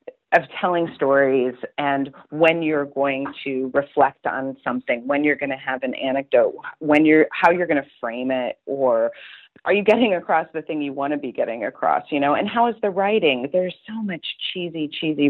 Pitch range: 130-175 Hz